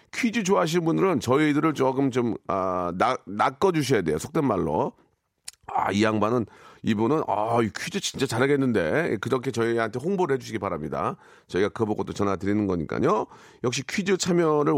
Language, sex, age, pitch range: Korean, male, 40-59, 105-160 Hz